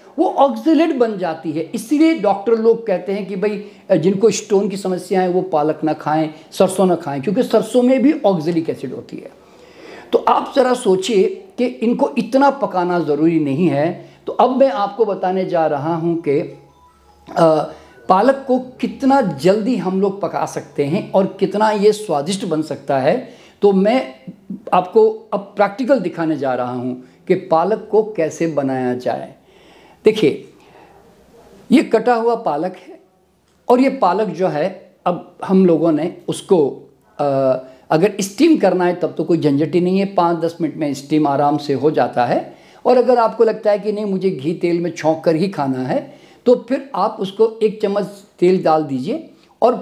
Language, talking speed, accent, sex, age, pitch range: Hindi, 175 wpm, native, male, 50-69, 165-225 Hz